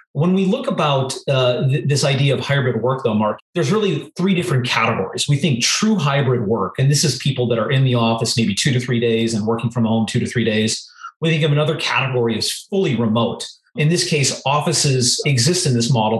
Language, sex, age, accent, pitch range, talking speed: English, male, 30-49, American, 120-150 Hz, 225 wpm